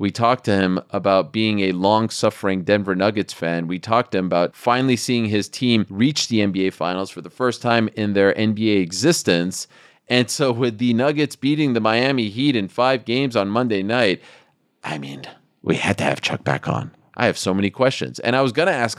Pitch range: 105-145 Hz